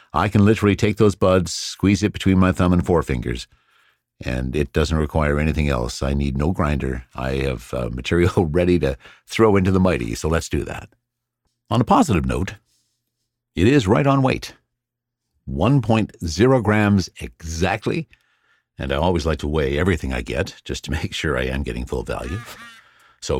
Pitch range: 75-105 Hz